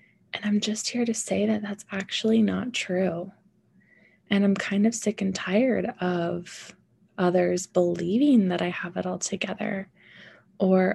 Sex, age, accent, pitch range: female, 20-39, American, 180-210 Hz